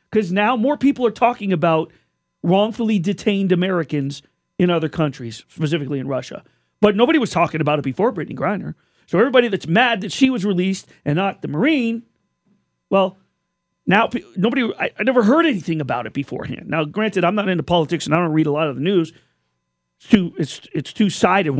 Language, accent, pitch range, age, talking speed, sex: English, American, 160-215 Hz, 40-59, 185 wpm, male